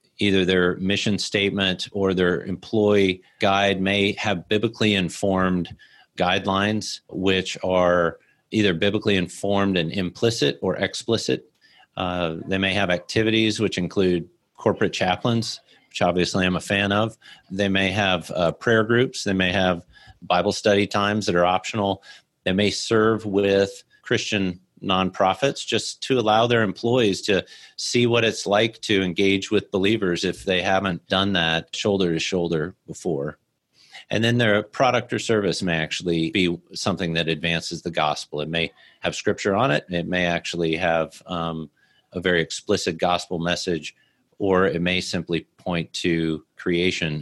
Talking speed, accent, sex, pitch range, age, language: 150 wpm, American, male, 85-100 Hz, 30-49, English